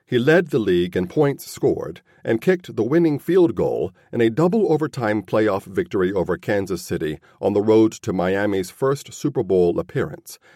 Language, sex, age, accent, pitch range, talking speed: English, male, 40-59, American, 105-155 Hz, 170 wpm